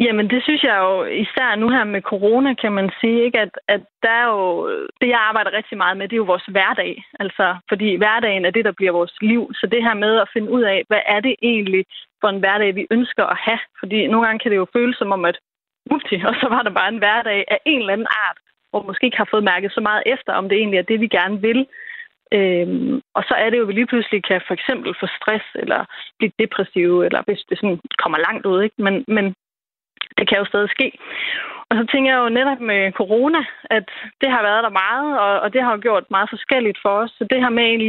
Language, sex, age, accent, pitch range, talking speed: Danish, female, 30-49, native, 195-240 Hz, 250 wpm